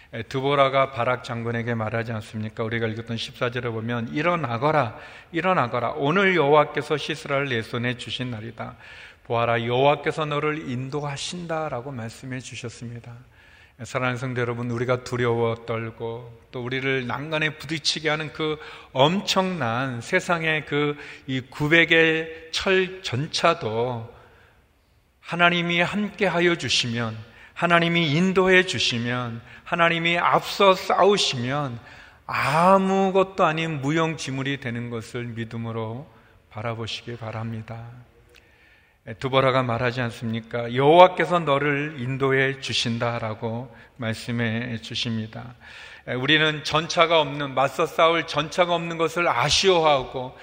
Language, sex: Korean, male